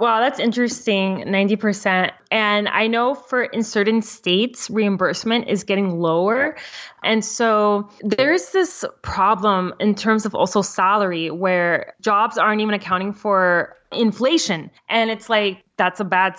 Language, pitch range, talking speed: English, 190-225 Hz, 140 wpm